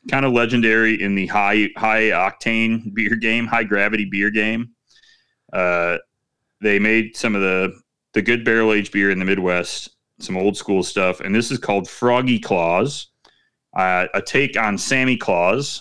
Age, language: 30-49, English